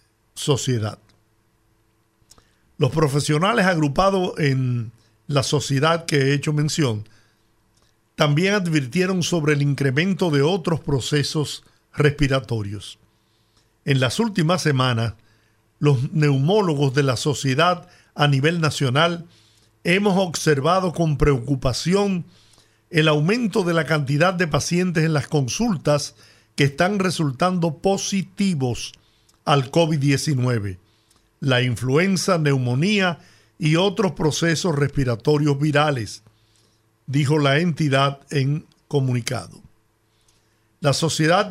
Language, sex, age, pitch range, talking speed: Spanish, male, 50-69, 120-170 Hz, 95 wpm